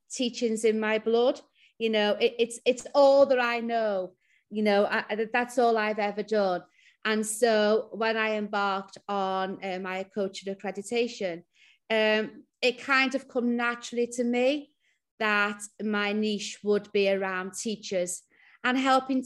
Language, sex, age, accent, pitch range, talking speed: English, female, 30-49, British, 205-240 Hz, 150 wpm